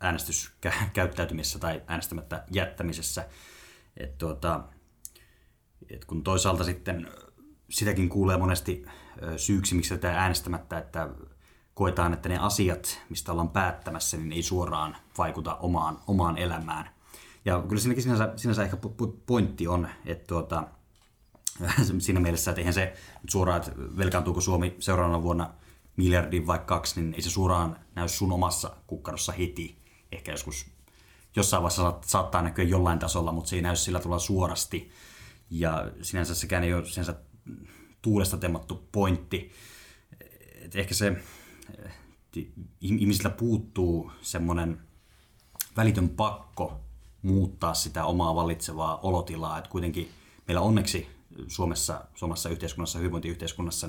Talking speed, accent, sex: 125 wpm, native, male